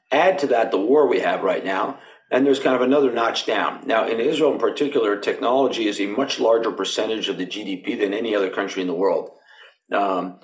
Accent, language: American, English